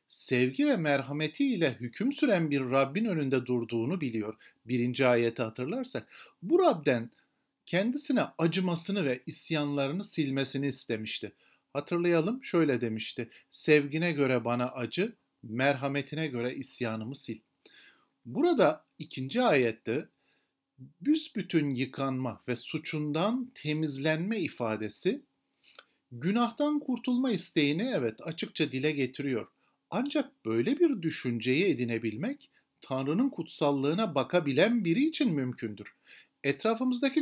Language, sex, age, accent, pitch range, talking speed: Turkish, male, 50-69, native, 130-190 Hz, 95 wpm